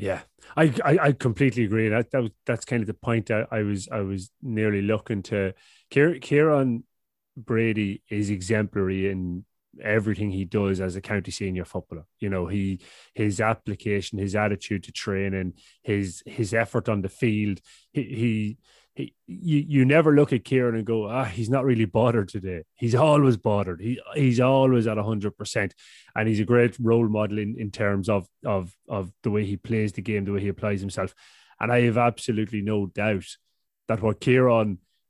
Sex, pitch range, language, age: male, 100-125 Hz, English, 30-49